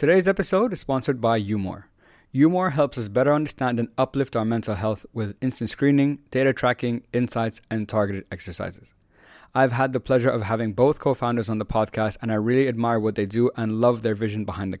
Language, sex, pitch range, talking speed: English, male, 110-130 Hz, 200 wpm